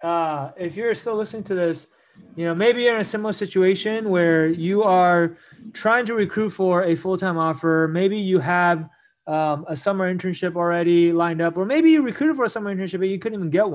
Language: English